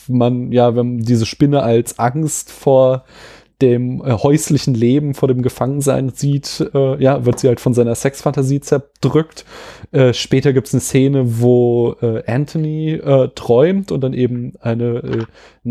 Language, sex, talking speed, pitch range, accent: German, male, 155 wpm, 115-140 Hz, German